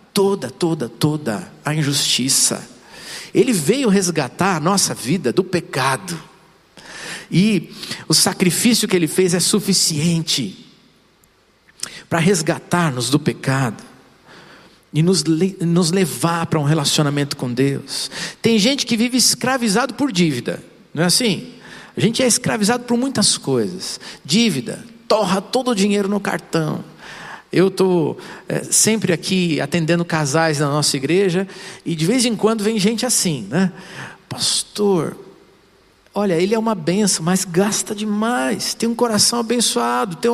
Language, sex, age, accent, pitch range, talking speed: Portuguese, male, 50-69, Brazilian, 165-225 Hz, 135 wpm